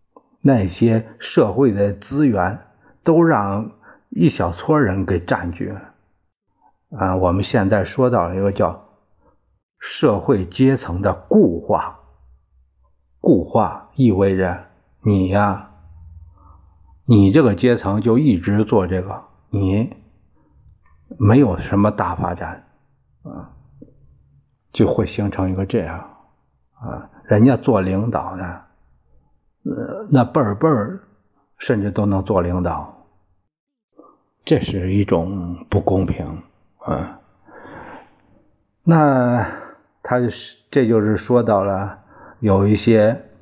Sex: male